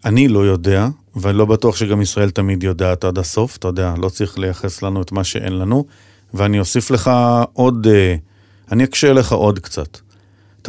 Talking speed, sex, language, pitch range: 180 wpm, male, Hebrew, 90-110 Hz